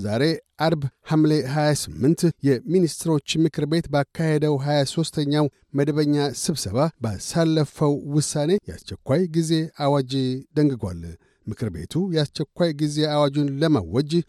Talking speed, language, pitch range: 100 wpm, Amharic, 140-160 Hz